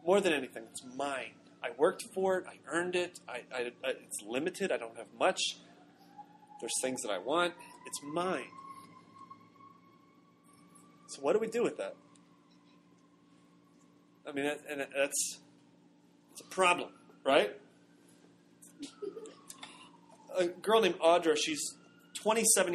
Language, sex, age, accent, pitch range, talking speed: English, male, 30-49, American, 135-185 Hz, 130 wpm